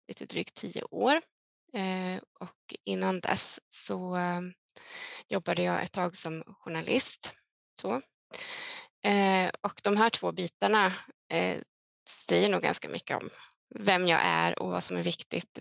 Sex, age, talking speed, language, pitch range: female, 20-39, 125 wpm, Swedish, 175-220 Hz